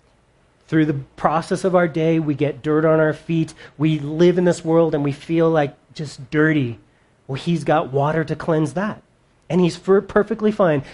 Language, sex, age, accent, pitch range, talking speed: English, male, 30-49, American, 140-180 Hz, 190 wpm